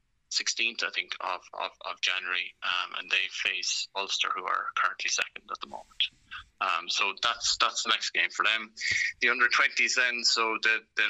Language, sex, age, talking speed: English, male, 20-39, 190 wpm